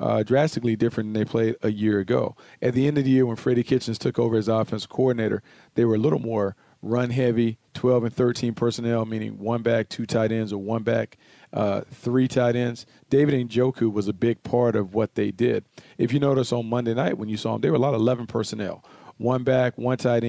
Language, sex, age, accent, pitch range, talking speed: English, male, 40-59, American, 115-130 Hz, 230 wpm